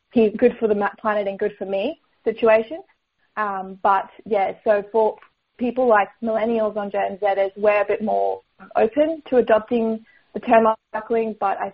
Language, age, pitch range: English, 20-39, 200-225 Hz